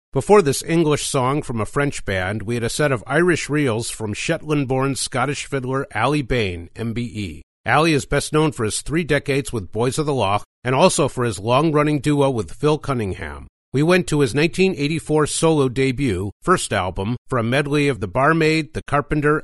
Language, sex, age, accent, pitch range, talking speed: English, male, 50-69, American, 110-150 Hz, 190 wpm